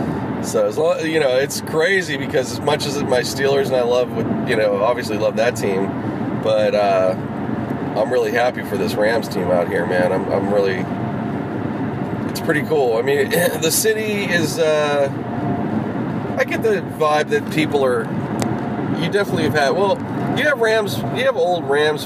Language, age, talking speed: English, 30-49, 170 wpm